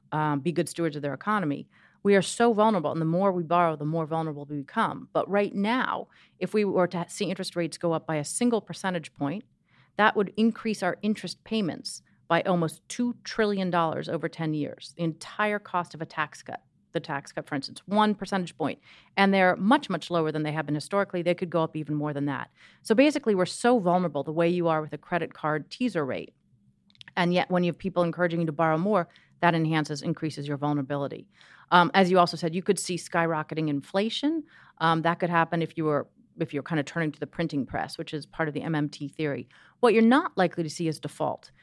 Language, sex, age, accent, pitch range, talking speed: English, female, 40-59, American, 160-195 Hz, 225 wpm